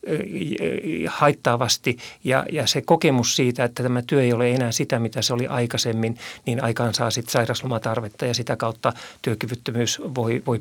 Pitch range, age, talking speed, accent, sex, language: 115-135 Hz, 50-69, 160 wpm, native, male, Finnish